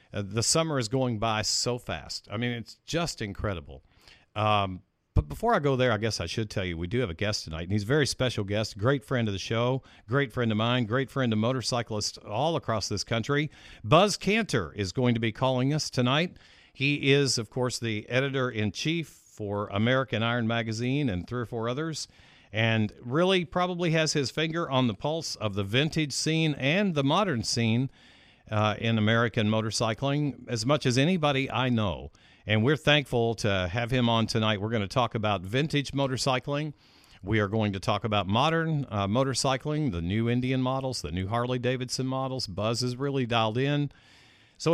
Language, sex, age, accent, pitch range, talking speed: English, male, 50-69, American, 105-135 Hz, 190 wpm